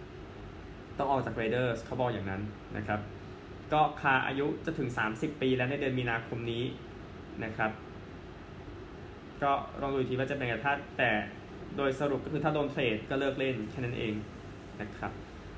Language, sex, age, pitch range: Thai, male, 20-39, 110-135 Hz